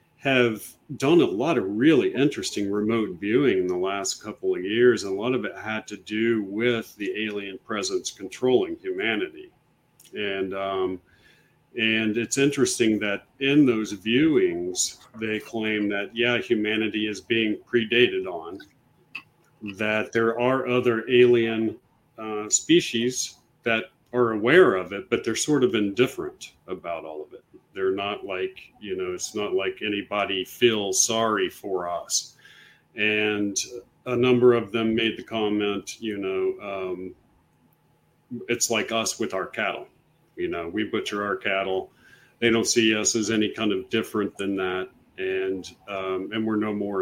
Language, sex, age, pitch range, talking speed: English, male, 40-59, 105-130 Hz, 155 wpm